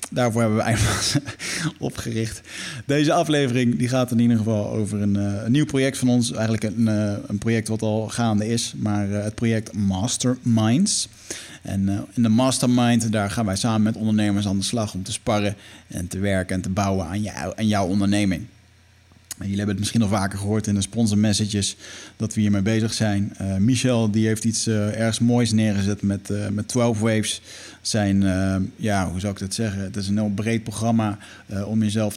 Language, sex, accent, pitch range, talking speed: Dutch, male, Dutch, 100-120 Hz, 195 wpm